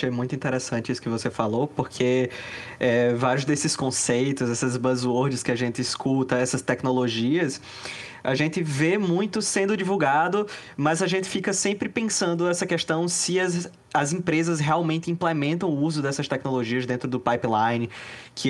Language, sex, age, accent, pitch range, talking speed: Portuguese, male, 20-39, Brazilian, 135-185 Hz, 150 wpm